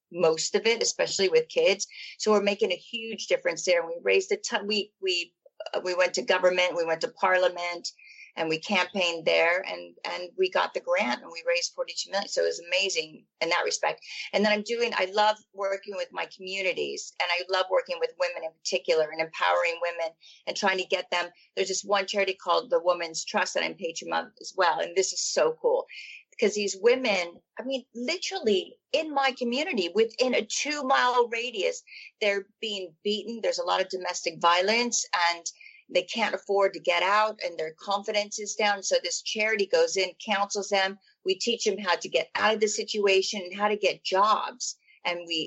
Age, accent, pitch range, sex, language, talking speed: 40-59, American, 180-265 Hz, female, English, 205 wpm